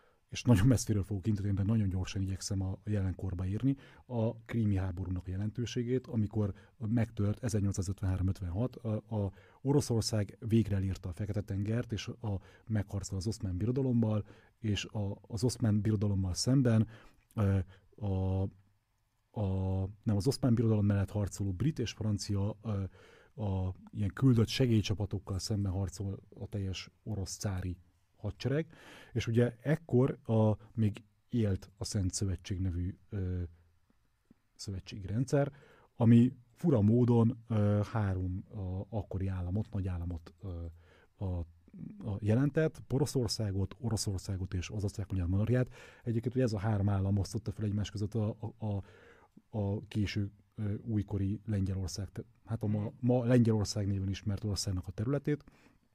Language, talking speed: Hungarian, 130 wpm